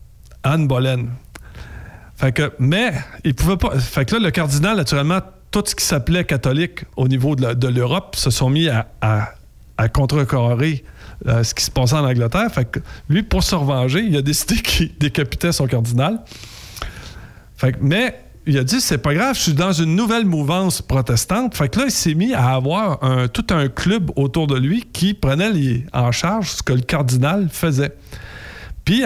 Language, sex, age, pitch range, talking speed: French, male, 50-69, 130-185 Hz, 190 wpm